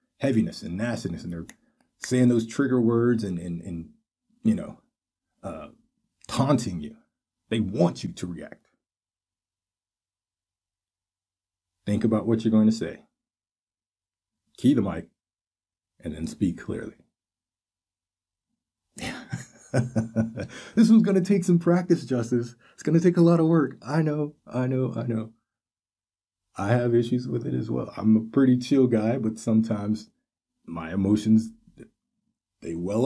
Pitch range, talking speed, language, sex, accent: 90-130 Hz, 140 wpm, English, male, American